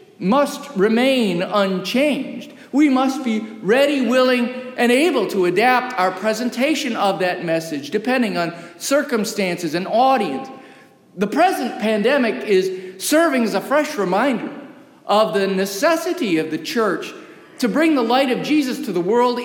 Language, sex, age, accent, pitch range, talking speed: English, male, 50-69, American, 200-300 Hz, 140 wpm